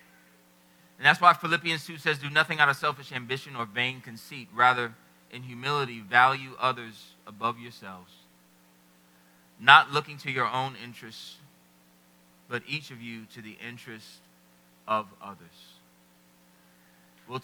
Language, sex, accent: English, male, American